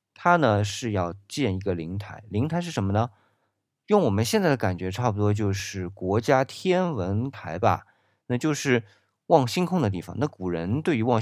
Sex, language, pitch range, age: male, Chinese, 95-125 Hz, 20-39